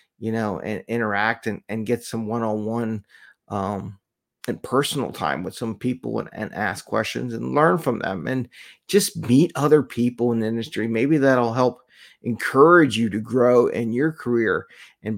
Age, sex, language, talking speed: 30-49, male, English, 165 wpm